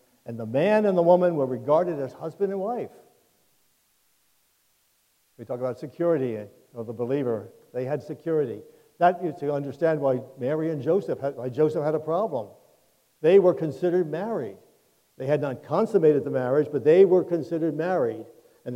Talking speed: 165 wpm